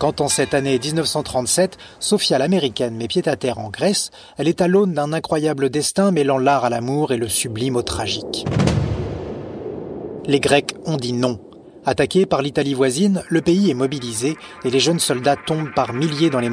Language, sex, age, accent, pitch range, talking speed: French, male, 30-49, French, 130-170 Hz, 180 wpm